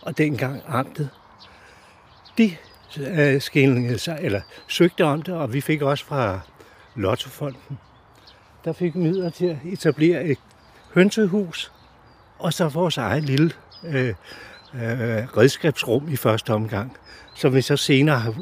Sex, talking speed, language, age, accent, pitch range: male, 135 wpm, Danish, 60-79, native, 125-165 Hz